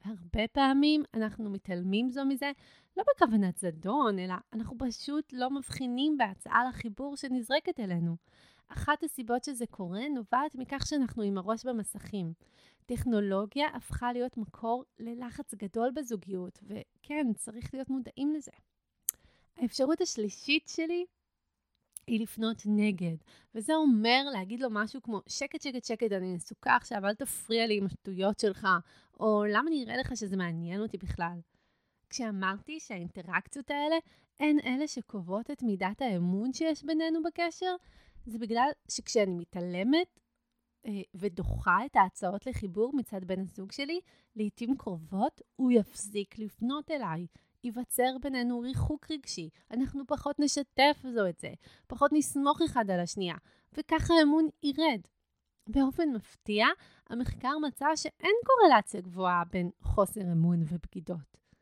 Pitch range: 200-285 Hz